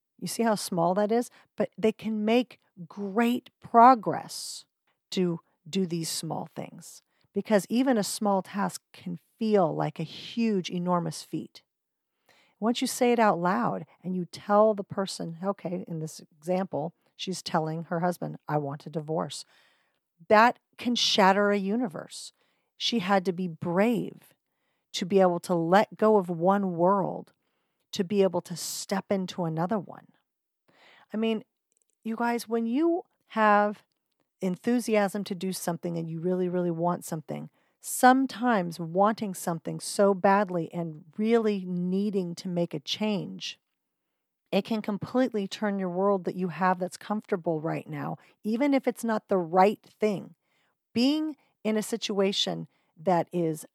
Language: English